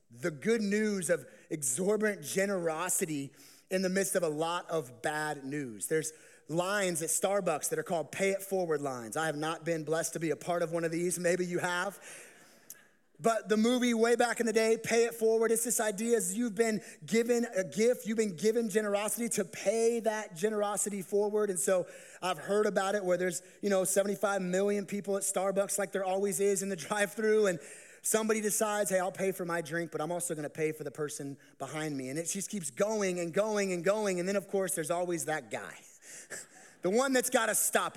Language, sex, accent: English, male, American